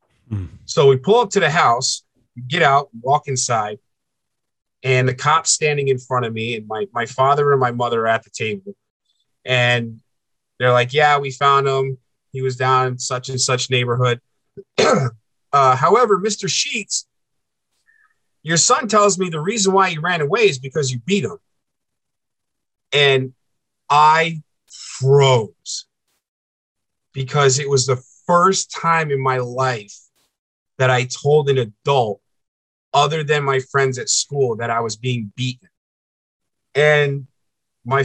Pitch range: 120-150 Hz